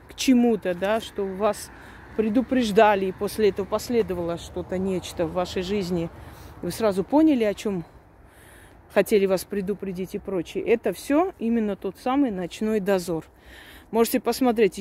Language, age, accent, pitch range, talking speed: Russian, 30-49, native, 175-225 Hz, 140 wpm